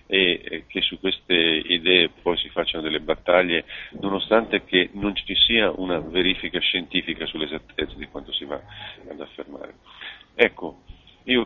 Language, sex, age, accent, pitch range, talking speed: Italian, male, 40-59, native, 85-105 Hz, 140 wpm